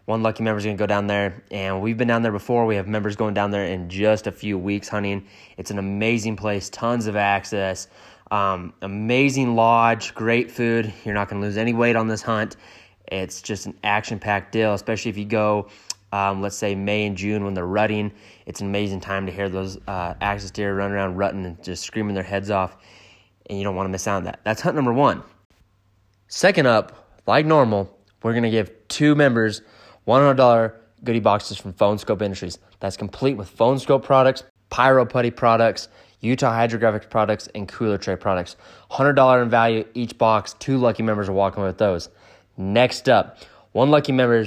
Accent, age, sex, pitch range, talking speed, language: American, 20-39, male, 100-115 Hz, 200 wpm, English